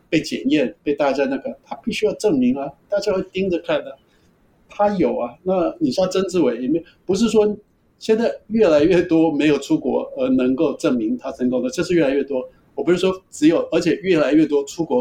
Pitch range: 145-225 Hz